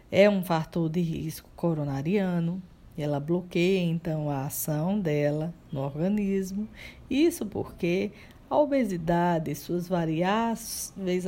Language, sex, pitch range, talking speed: Portuguese, female, 170-220 Hz, 115 wpm